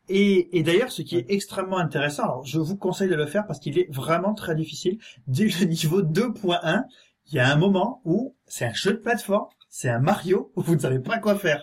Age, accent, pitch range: 30-49, French, 140-200 Hz